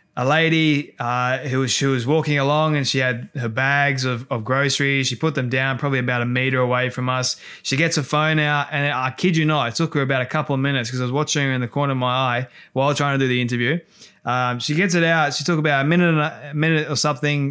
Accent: Australian